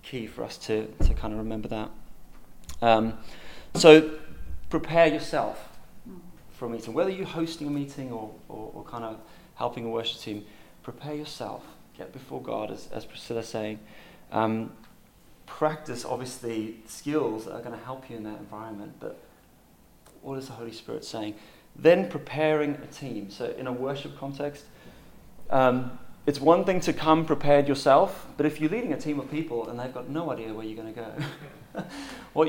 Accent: British